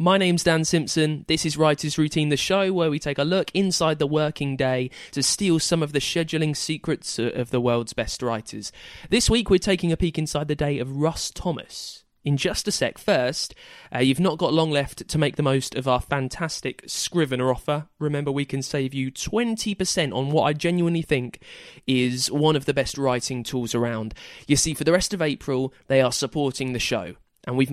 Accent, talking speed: British, 210 wpm